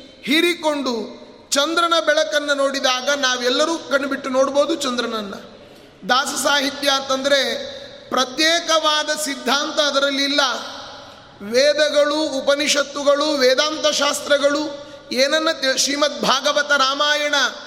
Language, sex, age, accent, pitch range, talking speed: Kannada, male, 30-49, native, 255-290 Hz, 75 wpm